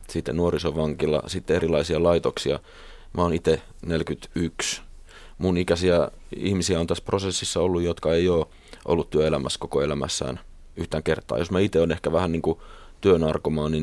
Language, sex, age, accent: Finnish, male, 30-49, native